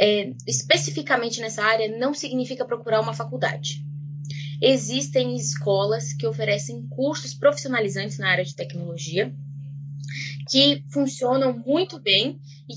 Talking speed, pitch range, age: 110 wpm, 180-260 Hz, 10-29